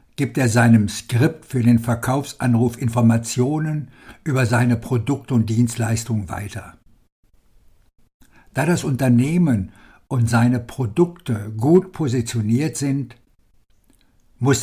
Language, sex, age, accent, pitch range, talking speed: German, male, 60-79, German, 115-135 Hz, 100 wpm